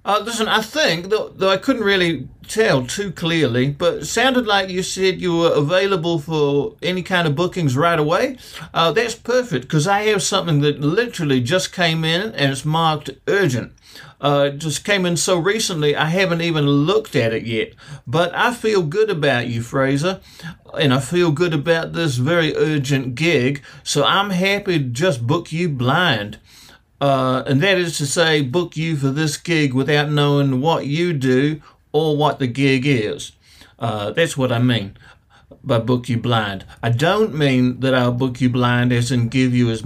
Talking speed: 190 wpm